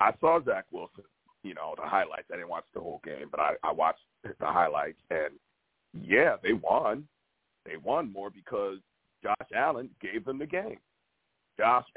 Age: 50-69